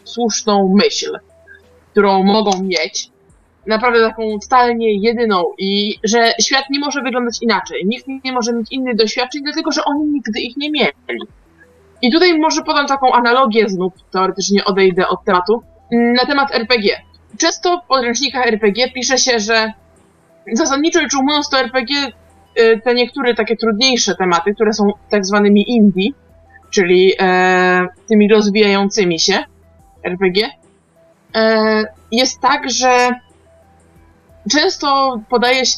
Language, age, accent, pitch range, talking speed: Polish, 20-39, native, 205-265 Hz, 125 wpm